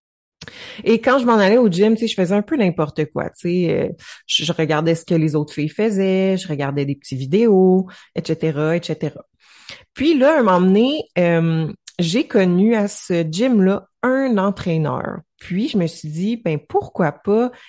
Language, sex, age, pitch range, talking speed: French, female, 30-49, 165-220 Hz, 180 wpm